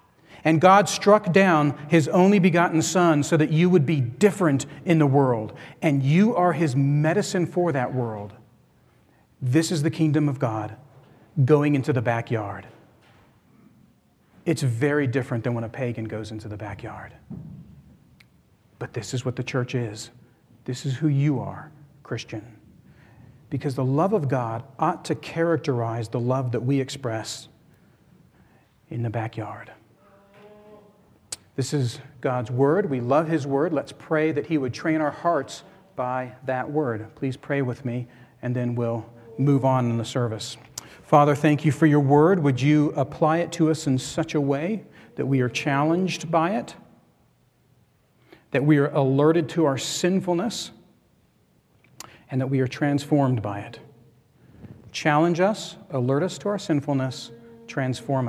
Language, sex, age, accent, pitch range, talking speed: English, male, 40-59, American, 120-155 Hz, 155 wpm